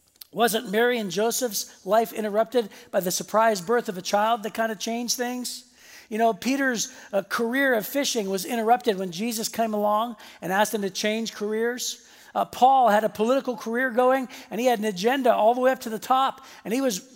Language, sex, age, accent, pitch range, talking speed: English, male, 50-69, American, 215-265 Hz, 205 wpm